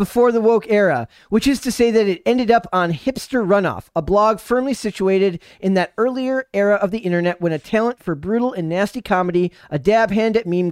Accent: American